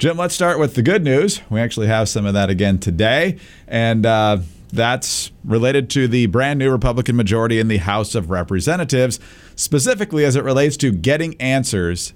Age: 50-69